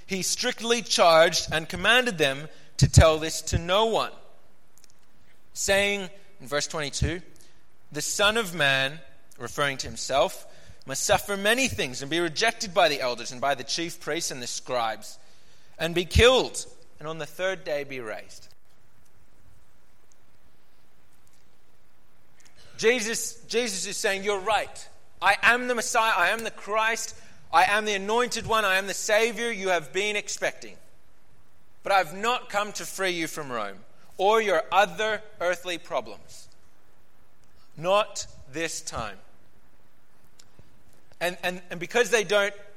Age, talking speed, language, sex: 30-49, 145 wpm, English, male